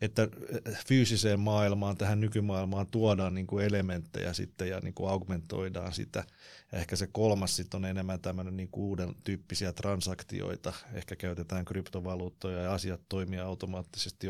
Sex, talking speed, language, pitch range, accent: male, 130 wpm, Finnish, 90-100 Hz, native